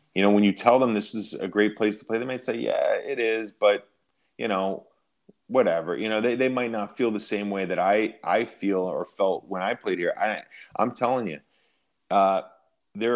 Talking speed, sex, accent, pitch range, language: 220 wpm, male, American, 95-110 Hz, English